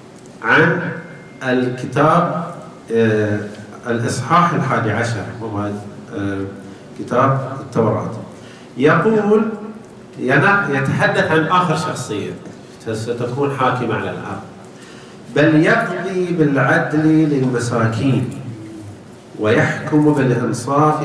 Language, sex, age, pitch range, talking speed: Arabic, male, 40-59, 120-170 Hz, 65 wpm